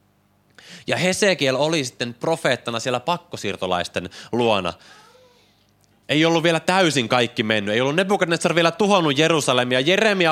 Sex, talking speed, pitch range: male, 120 wpm, 105-150 Hz